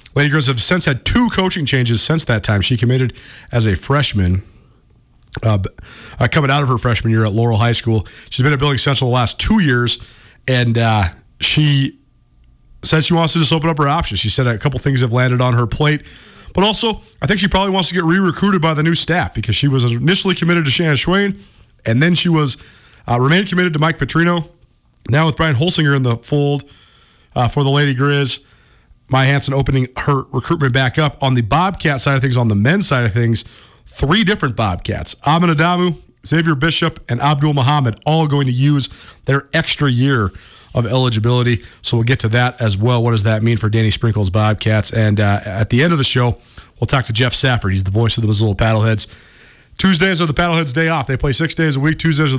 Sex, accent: male, American